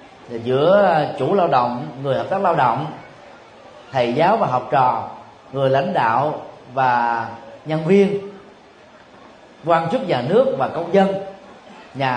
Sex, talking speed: male, 140 wpm